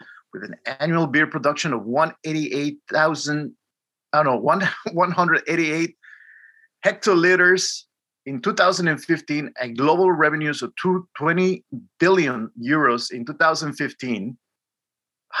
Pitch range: 145-185 Hz